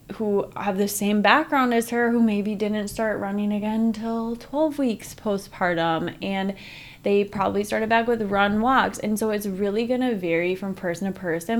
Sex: female